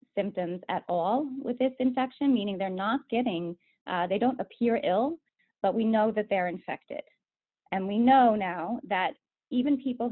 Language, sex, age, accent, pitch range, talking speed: English, female, 30-49, American, 180-235 Hz, 165 wpm